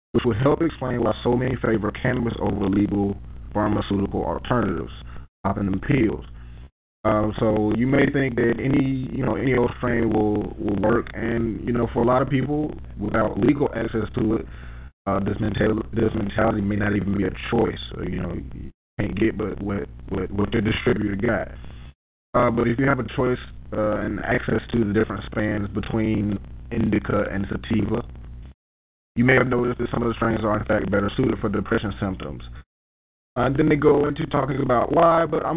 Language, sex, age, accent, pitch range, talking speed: English, male, 20-39, American, 100-125 Hz, 190 wpm